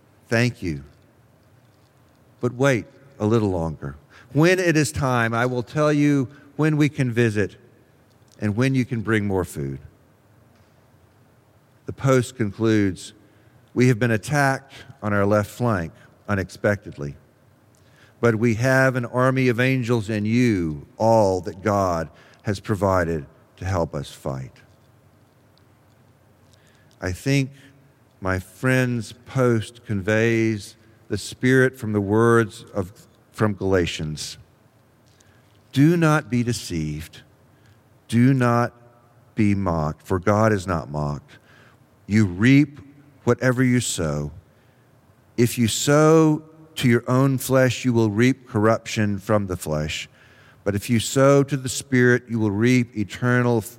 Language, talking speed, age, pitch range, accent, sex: English, 125 wpm, 50-69, 105-130 Hz, American, male